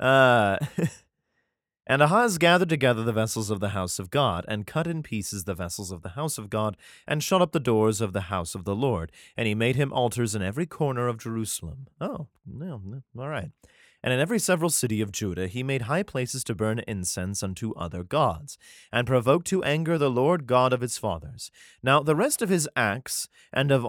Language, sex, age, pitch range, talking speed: English, male, 30-49, 105-150 Hz, 210 wpm